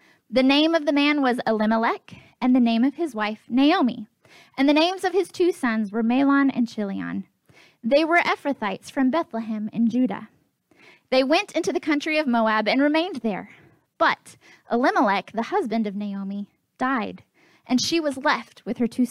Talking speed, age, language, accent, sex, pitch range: 175 wpm, 10-29, English, American, female, 225-305 Hz